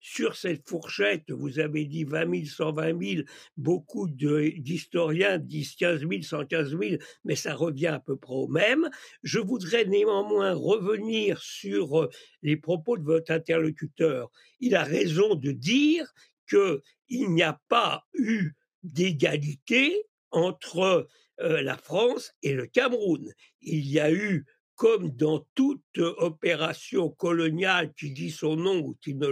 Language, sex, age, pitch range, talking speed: French, male, 60-79, 155-210 Hz, 145 wpm